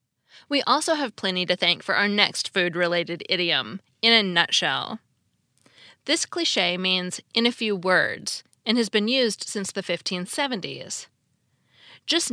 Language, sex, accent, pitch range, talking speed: English, female, American, 185-255 Hz, 140 wpm